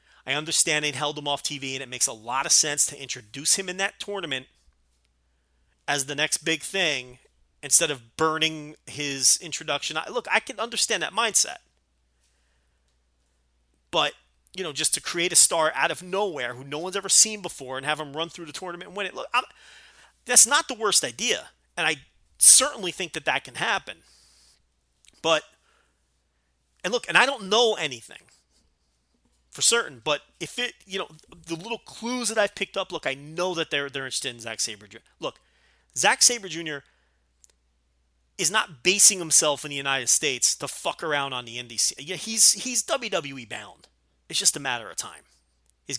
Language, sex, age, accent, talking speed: English, male, 30-49, American, 185 wpm